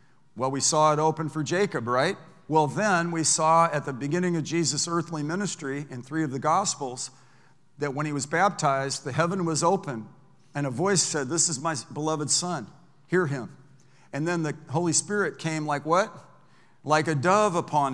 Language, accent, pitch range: English, American, 155-185 Hz